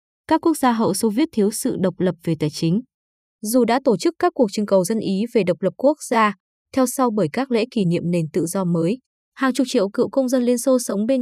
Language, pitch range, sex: Vietnamese, 190-255 Hz, female